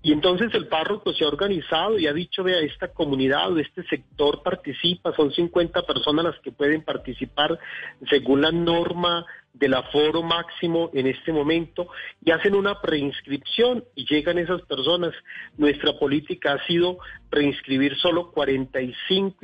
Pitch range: 140-175 Hz